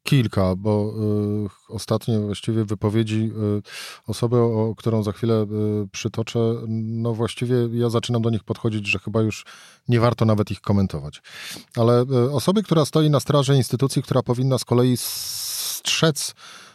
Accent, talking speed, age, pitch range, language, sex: native, 135 wpm, 40-59, 100-125 Hz, Polish, male